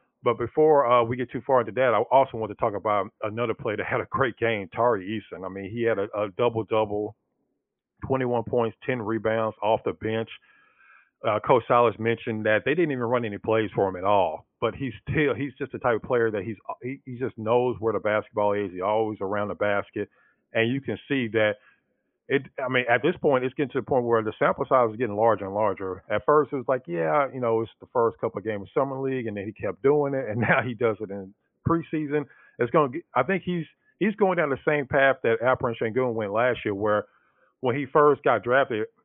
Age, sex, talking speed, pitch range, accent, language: 40-59, male, 245 wpm, 105-135 Hz, American, English